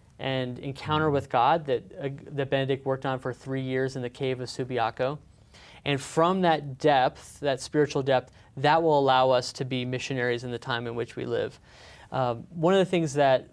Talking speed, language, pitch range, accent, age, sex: 200 wpm, English, 130-160 Hz, American, 30-49, male